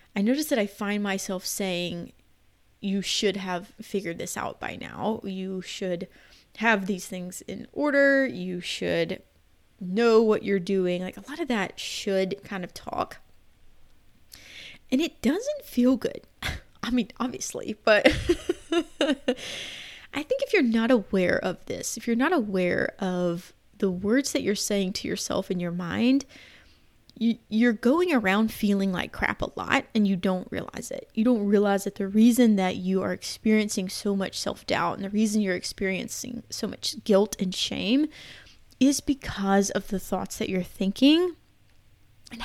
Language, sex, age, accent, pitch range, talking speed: English, female, 20-39, American, 190-260 Hz, 160 wpm